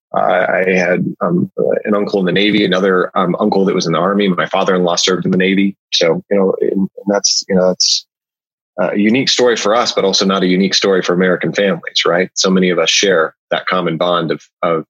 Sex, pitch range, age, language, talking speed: male, 95-115 Hz, 20-39, English, 220 wpm